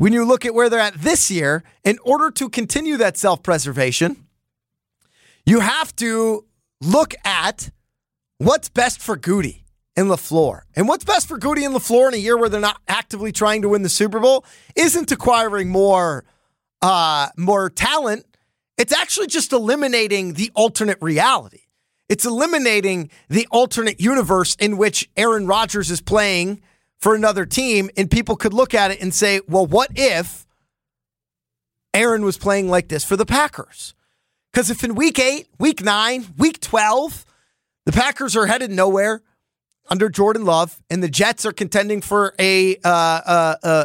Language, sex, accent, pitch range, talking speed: English, male, American, 185-235 Hz, 160 wpm